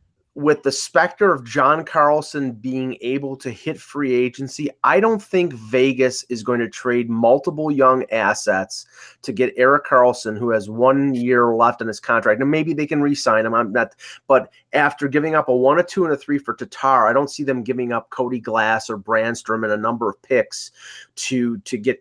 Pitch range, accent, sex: 120-150 Hz, American, male